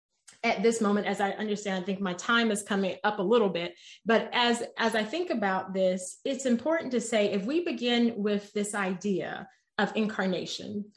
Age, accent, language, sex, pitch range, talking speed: 30-49, American, English, female, 185-230 Hz, 190 wpm